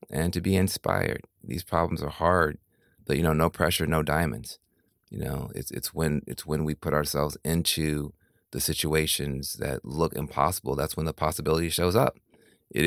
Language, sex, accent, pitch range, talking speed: English, male, American, 75-85 Hz, 175 wpm